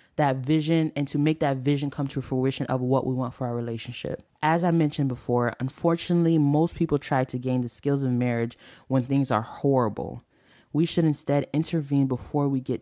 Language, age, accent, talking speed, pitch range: English, 20-39, American, 195 wpm, 130-160 Hz